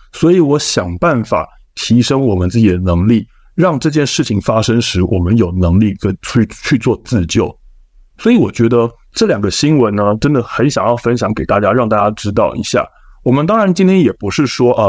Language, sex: Chinese, male